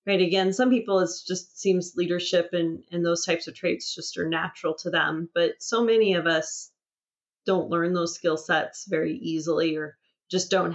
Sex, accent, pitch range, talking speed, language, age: female, American, 165-185 Hz, 190 wpm, English, 30-49